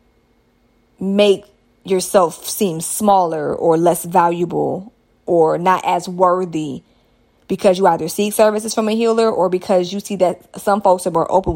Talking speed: 150 wpm